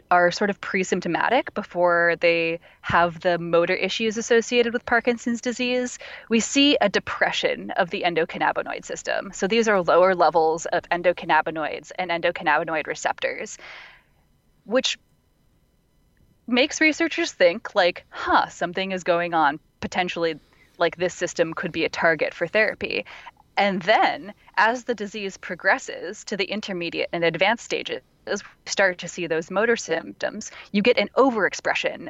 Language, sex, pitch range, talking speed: English, female, 170-245 Hz, 140 wpm